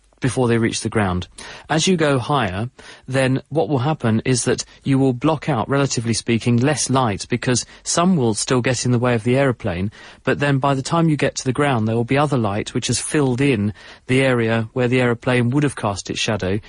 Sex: male